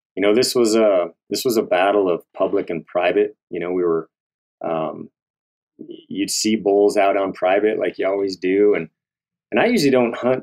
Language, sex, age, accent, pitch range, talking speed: English, male, 30-49, American, 90-135 Hz, 195 wpm